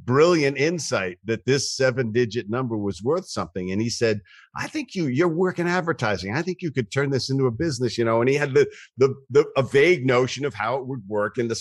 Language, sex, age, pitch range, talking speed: English, male, 50-69, 105-135 Hz, 240 wpm